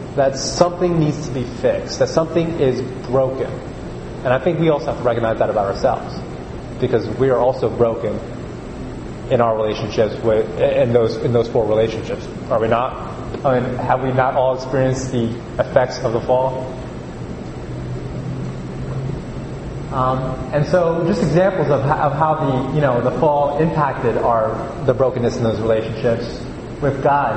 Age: 30-49